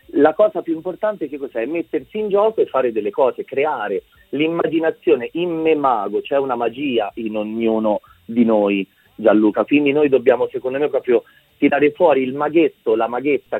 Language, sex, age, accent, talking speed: Italian, male, 40-59, native, 170 wpm